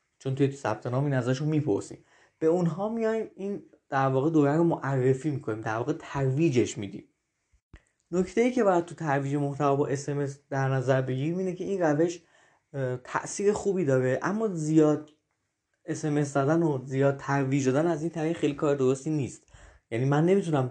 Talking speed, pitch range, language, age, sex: 170 wpm, 130-165 Hz, Persian, 20-39, male